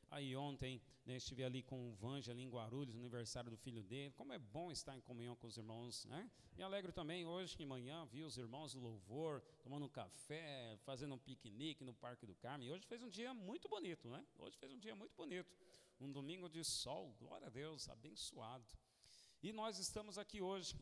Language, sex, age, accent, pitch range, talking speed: Portuguese, male, 40-59, Brazilian, 125-185 Hz, 210 wpm